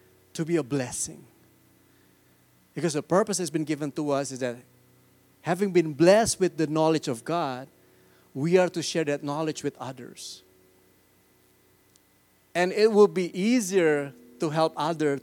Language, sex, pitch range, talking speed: English, male, 125-155 Hz, 150 wpm